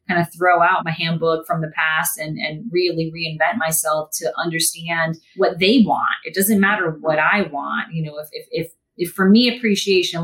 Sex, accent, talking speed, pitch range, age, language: female, American, 200 wpm, 160-200 Hz, 30-49, English